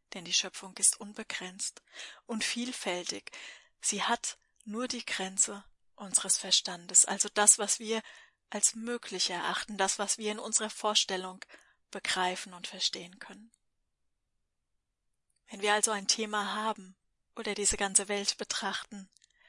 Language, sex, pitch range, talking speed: German, female, 190-215 Hz, 130 wpm